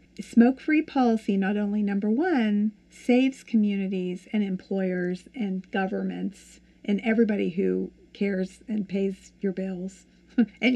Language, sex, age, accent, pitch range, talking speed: English, female, 50-69, American, 195-235 Hz, 115 wpm